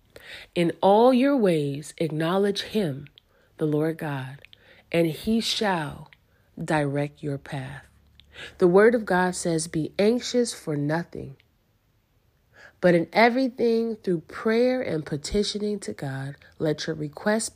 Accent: American